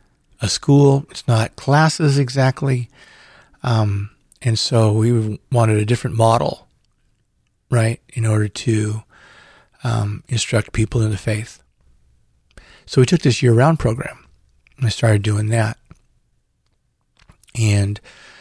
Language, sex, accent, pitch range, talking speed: English, male, American, 105-125 Hz, 115 wpm